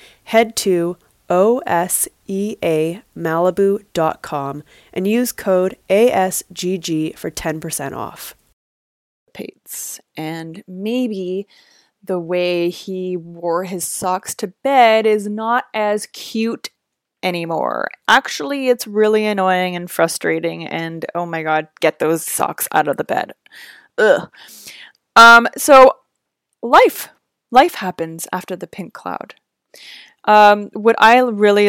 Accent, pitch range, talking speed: American, 175-215 Hz, 110 wpm